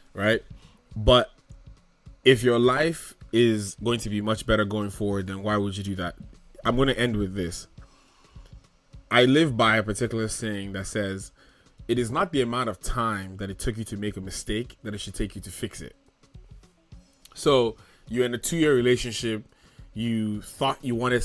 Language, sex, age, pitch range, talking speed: English, male, 20-39, 105-130 Hz, 185 wpm